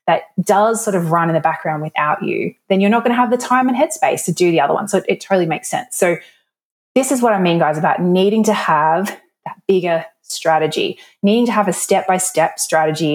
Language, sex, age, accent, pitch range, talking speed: English, female, 20-39, Australian, 160-210 Hz, 235 wpm